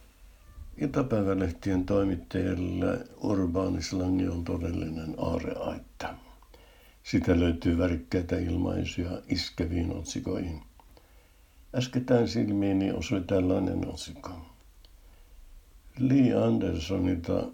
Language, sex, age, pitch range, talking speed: Finnish, male, 60-79, 80-100 Hz, 65 wpm